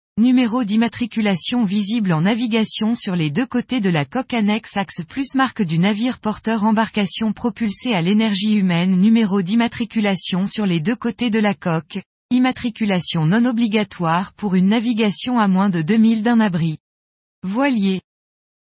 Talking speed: 145 wpm